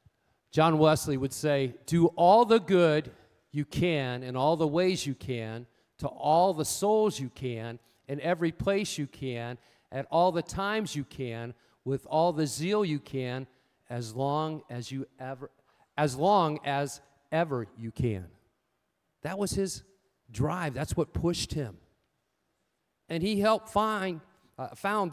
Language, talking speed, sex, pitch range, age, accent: English, 155 wpm, male, 135-205 Hz, 40-59, American